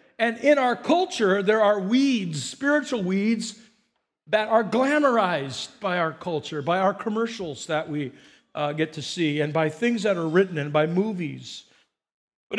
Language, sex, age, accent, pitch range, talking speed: English, male, 50-69, American, 170-230 Hz, 160 wpm